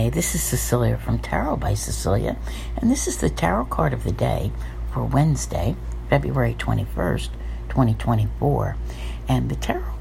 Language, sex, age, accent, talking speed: English, female, 60-79, American, 145 wpm